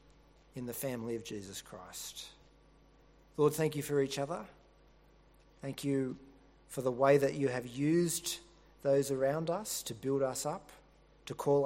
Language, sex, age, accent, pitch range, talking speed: English, male, 40-59, Australian, 115-140 Hz, 155 wpm